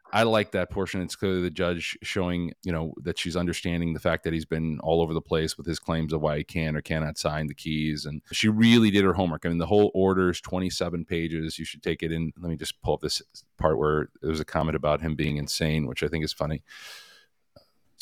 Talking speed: 255 wpm